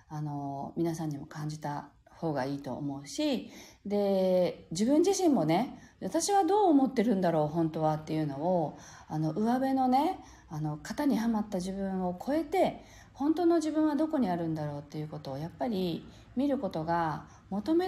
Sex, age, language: female, 40-59, Japanese